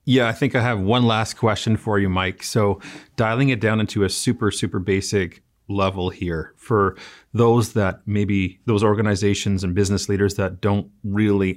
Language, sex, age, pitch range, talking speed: English, male, 30-49, 95-110 Hz, 175 wpm